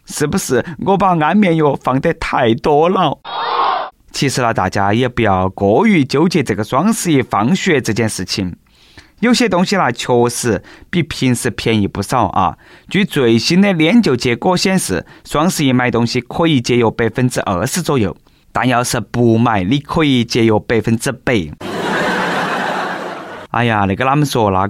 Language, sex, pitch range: Chinese, male, 110-165 Hz